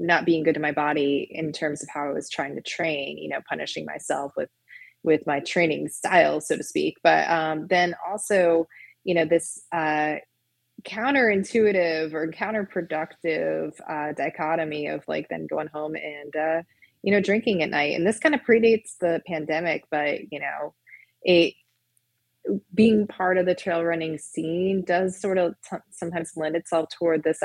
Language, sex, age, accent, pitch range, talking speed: English, female, 20-39, American, 155-175 Hz, 170 wpm